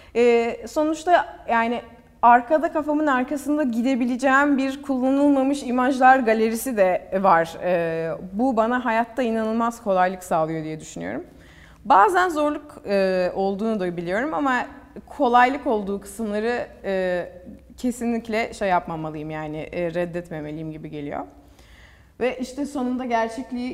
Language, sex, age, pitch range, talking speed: Turkish, female, 30-49, 180-245 Hz, 100 wpm